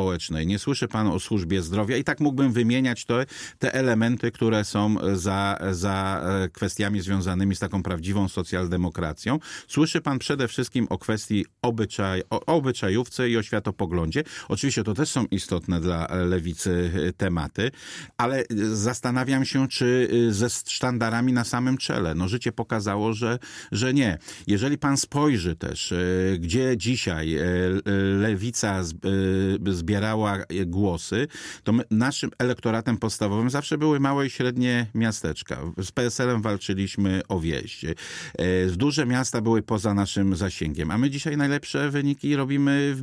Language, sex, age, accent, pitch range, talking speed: Polish, male, 50-69, native, 95-130 Hz, 130 wpm